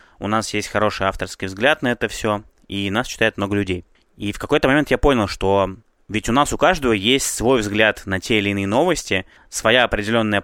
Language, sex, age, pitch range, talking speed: Russian, male, 20-39, 100-125 Hz, 205 wpm